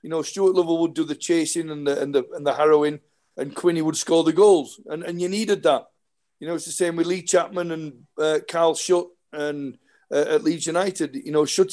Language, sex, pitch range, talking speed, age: English, male, 155-190 Hz, 235 wpm, 40-59